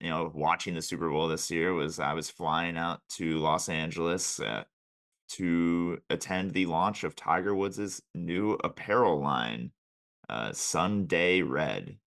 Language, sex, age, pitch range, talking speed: English, male, 30-49, 80-95 Hz, 150 wpm